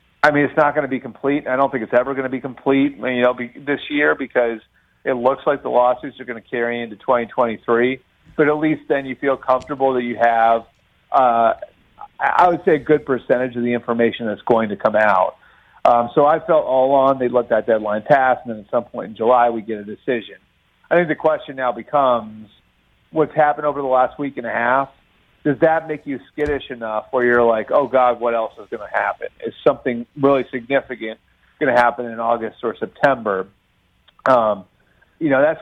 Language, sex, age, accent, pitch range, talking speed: English, male, 40-59, American, 115-135 Hz, 215 wpm